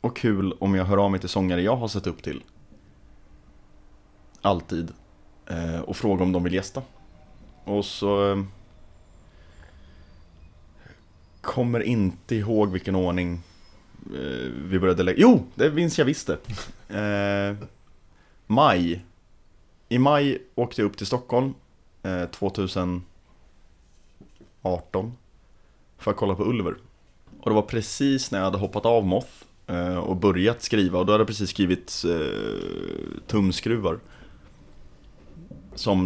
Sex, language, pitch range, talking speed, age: male, Swedish, 90-105 Hz, 120 wpm, 30-49